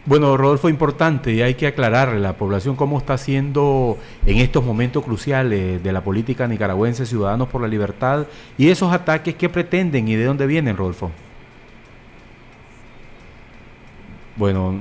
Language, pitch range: Spanish, 110-145 Hz